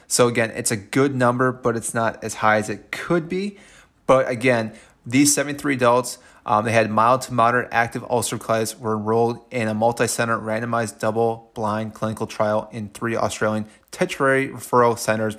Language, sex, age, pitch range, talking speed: English, male, 30-49, 105-120 Hz, 170 wpm